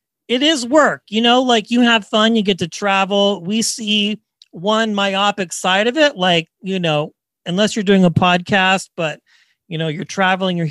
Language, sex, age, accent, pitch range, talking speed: English, male, 40-59, American, 175-225 Hz, 190 wpm